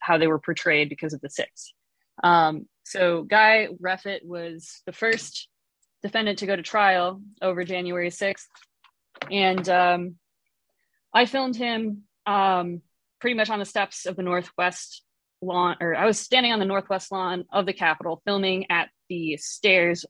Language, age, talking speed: English, 20-39, 160 wpm